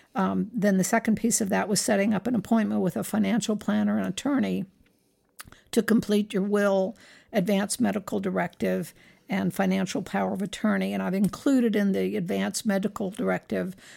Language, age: English, 60-79